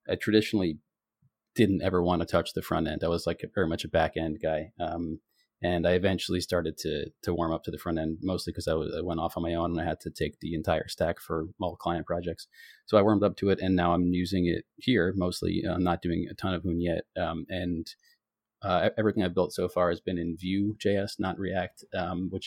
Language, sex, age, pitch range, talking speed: English, male, 30-49, 85-95 Hz, 245 wpm